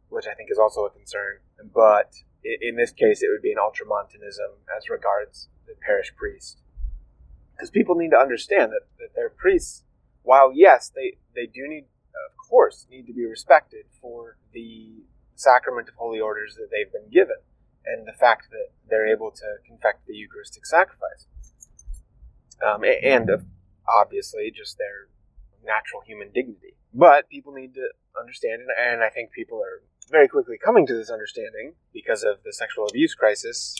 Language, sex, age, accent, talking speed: English, male, 30-49, American, 165 wpm